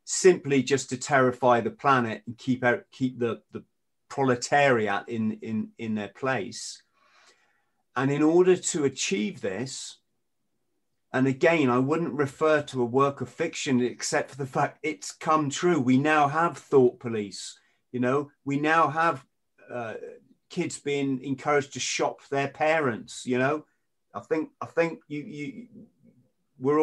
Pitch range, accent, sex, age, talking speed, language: 120-150 Hz, British, male, 40-59, 155 wpm, English